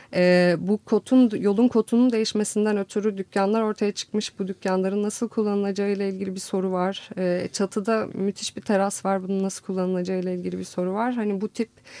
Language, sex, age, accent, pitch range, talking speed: Turkish, female, 30-49, native, 185-220 Hz, 170 wpm